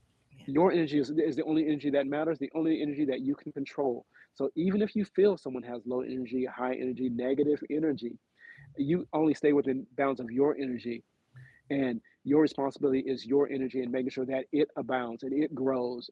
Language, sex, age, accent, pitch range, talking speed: English, male, 40-59, American, 130-155 Hz, 195 wpm